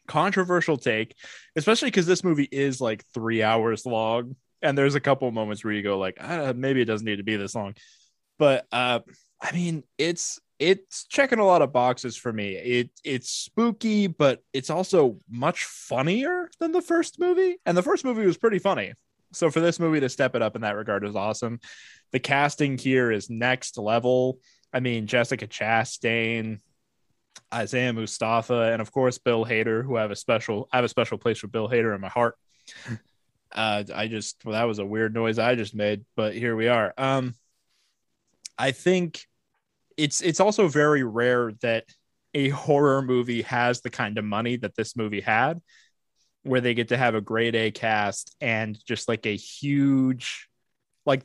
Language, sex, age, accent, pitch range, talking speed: English, male, 20-39, American, 110-145 Hz, 185 wpm